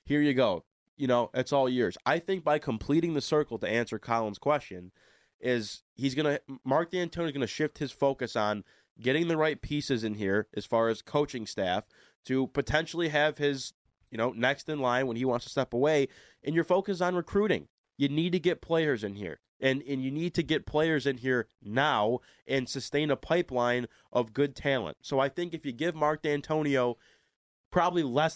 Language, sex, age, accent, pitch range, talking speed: English, male, 20-39, American, 125-160 Hz, 200 wpm